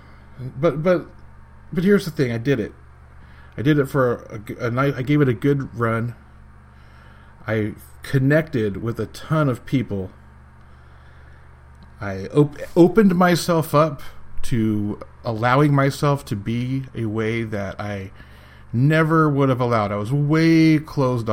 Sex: male